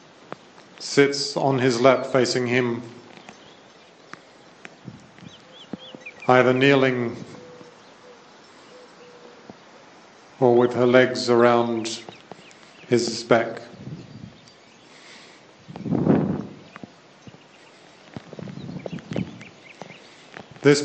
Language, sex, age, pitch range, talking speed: English, male, 50-69, 115-130 Hz, 45 wpm